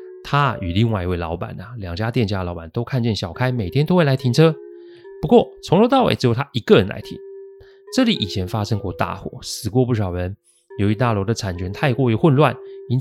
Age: 30-49